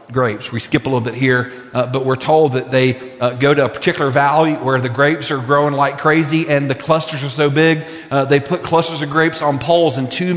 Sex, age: male, 40-59